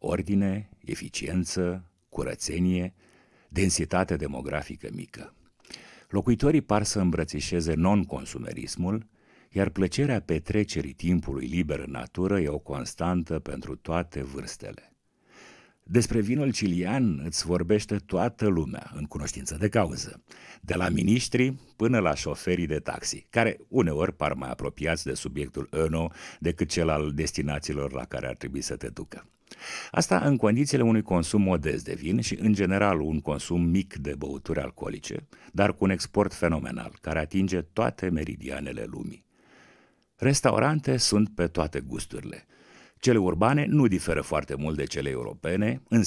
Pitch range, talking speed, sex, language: 75-105 Hz, 135 wpm, male, Romanian